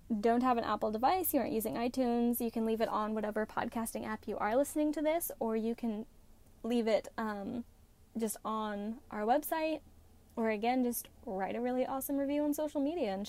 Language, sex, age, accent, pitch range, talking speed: English, female, 10-29, American, 210-250 Hz, 200 wpm